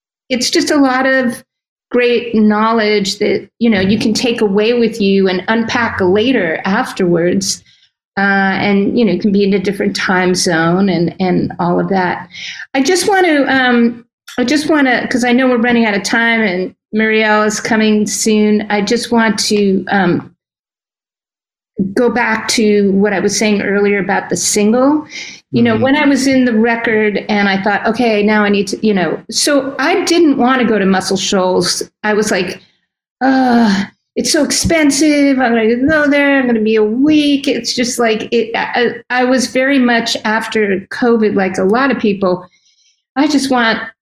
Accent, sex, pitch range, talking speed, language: American, female, 205-255 Hz, 185 wpm, English